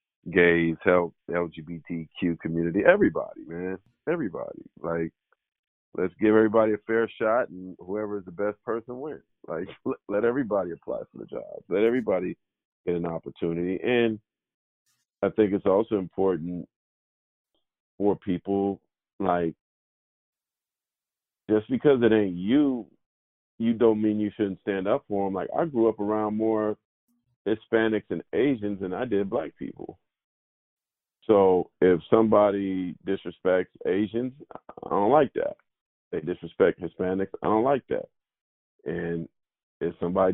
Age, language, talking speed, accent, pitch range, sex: 50-69, English, 130 wpm, American, 90-115 Hz, male